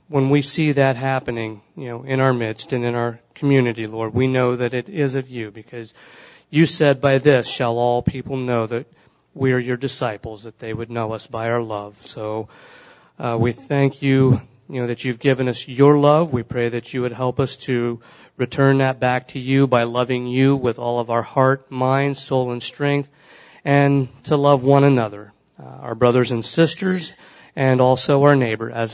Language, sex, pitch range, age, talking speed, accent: English, male, 115-140 Hz, 40-59, 200 wpm, American